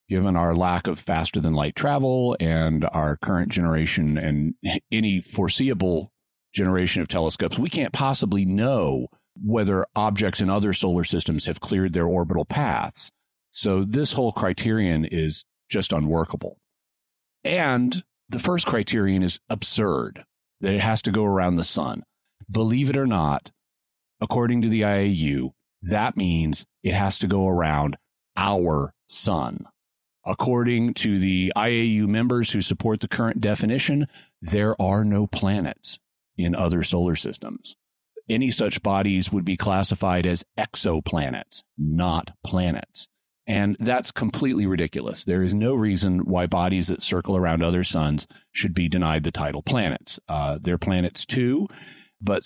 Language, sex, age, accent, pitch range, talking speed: English, male, 40-59, American, 90-110 Hz, 140 wpm